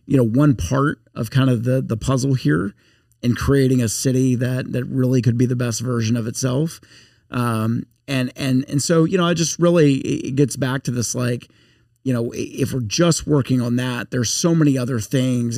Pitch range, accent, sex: 120-140 Hz, American, male